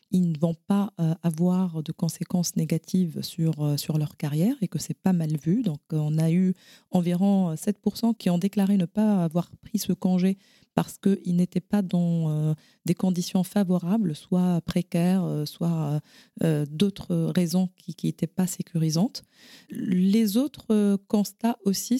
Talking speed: 150 wpm